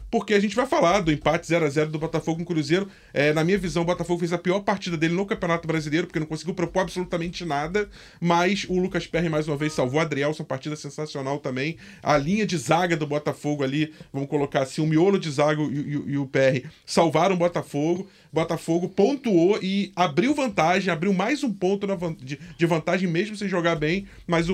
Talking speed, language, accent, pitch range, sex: 205 wpm, Portuguese, Brazilian, 150-180 Hz, male